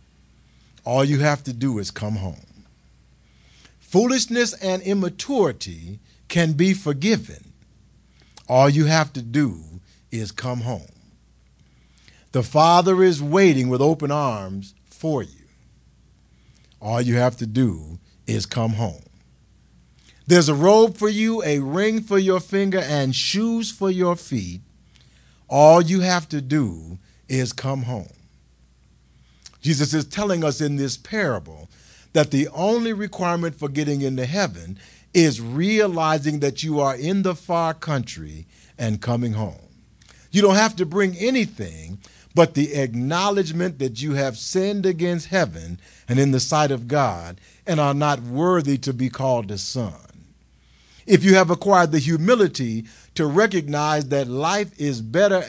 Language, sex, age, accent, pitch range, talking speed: English, male, 50-69, American, 105-175 Hz, 140 wpm